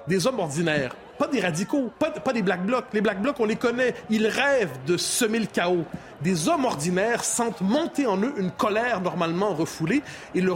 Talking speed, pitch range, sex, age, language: 200 wpm, 180-240 Hz, male, 30-49, French